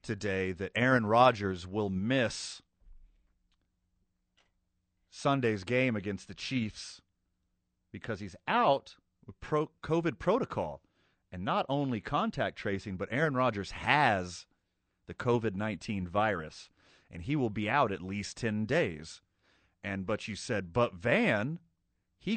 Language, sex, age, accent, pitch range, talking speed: English, male, 30-49, American, 90-120 Hz, 120 wpm